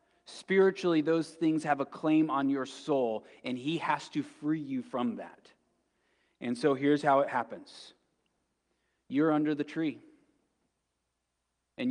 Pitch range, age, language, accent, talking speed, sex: 110-140 Hz, 30-49, English, American, 140 wpm, male